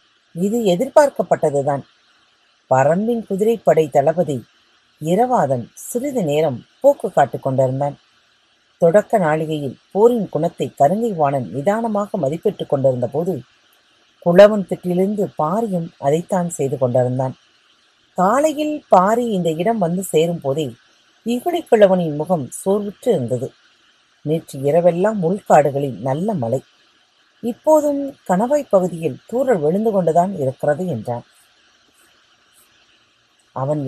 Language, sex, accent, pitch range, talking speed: Tamil, female, native, 145-220 Hz, 90 wpm